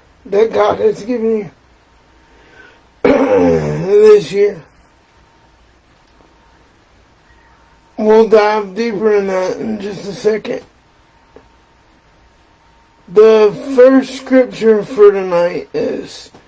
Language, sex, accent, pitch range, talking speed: English, male, American, 200-245 Hz, 80 wpm